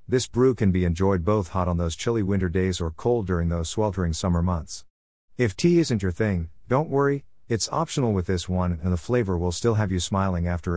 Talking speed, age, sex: 225 wpm, 50-69, male